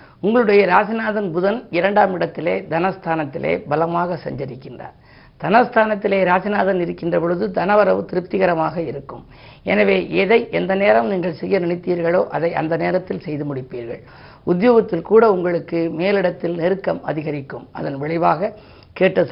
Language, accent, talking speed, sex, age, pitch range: Tamil, native, 110 wpm, female, 50-69, 165-200 Hz